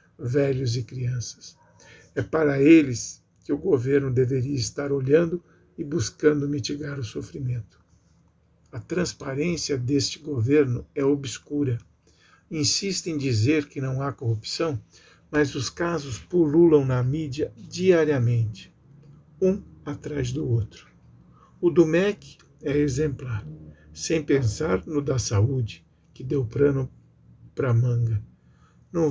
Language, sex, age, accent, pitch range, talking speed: Portuguese, male, 60-79, Brazilian, 115-155 Hz, 120 wpm